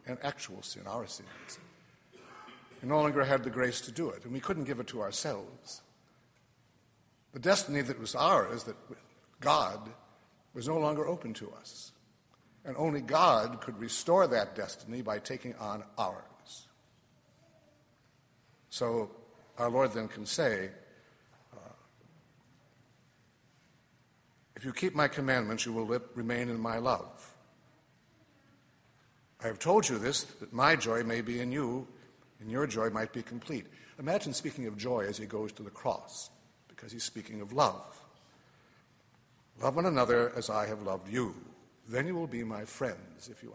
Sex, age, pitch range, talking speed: male, 60-79, 115-140 Hz, 155 wpm